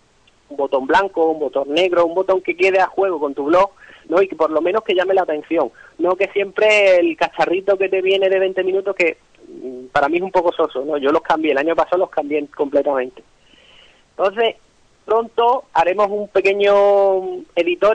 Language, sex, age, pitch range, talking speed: Spanish, male, 30-49, 170-205 Hz, 195 wpm